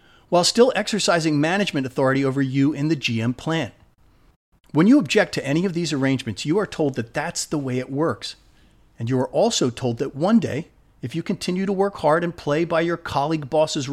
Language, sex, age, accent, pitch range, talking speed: English, male, 40-59, American, 130-170 Hz, 205 wpm